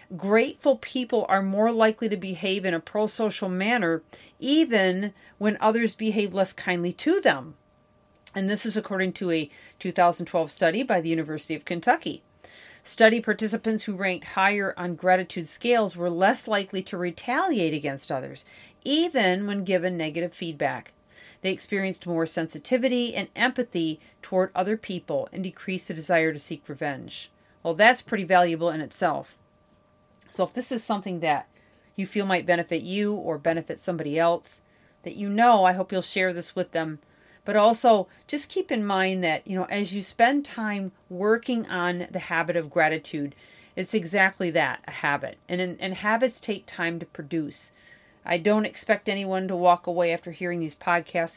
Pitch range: 170-210 Hz